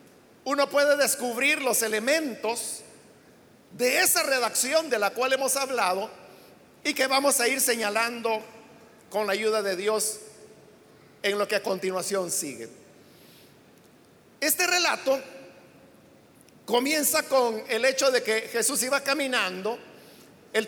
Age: 50-69